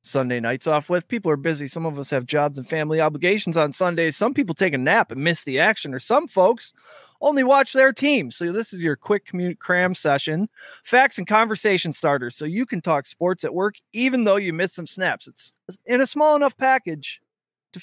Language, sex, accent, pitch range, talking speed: English, male, American, 150-210 Hz, 220 wpm